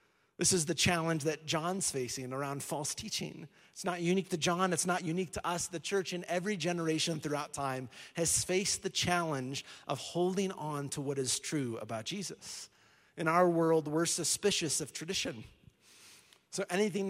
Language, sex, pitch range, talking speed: English, male, 145-180 Hz, 170 wpm